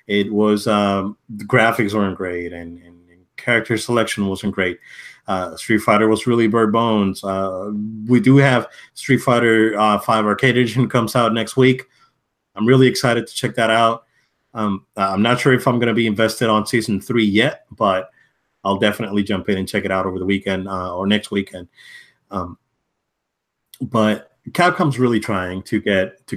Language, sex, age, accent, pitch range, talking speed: English, male, 30-49, American, 100-115 Hz, 180 wpm